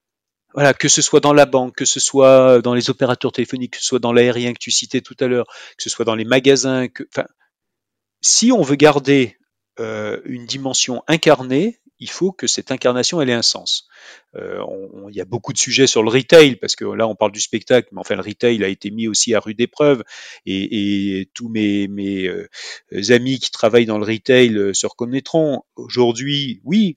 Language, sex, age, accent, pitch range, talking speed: French, male, 40-59, French, 110-140 Hz, 205 wpm